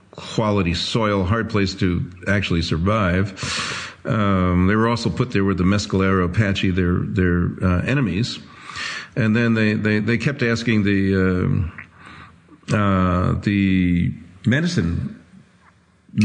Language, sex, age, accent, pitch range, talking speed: English, male, 50-69, American, 95-110 Hz, 120 wpm